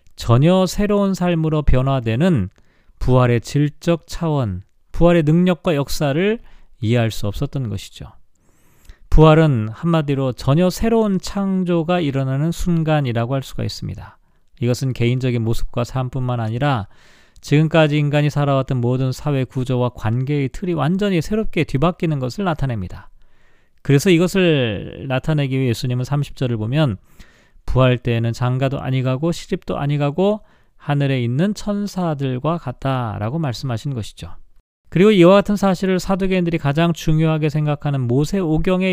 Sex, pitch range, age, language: male, 120-170 Hz, 40-59, Korean